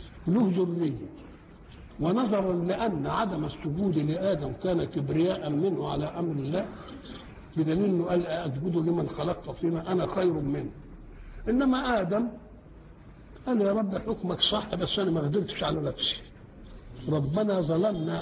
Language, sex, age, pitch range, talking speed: Arabic, male, 60-79, 160-205 Hz, 120 wpm